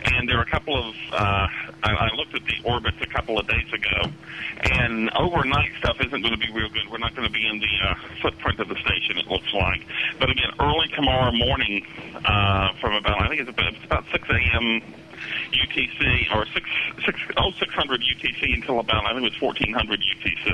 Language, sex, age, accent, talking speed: English, male, 40-59, American, 210 wpm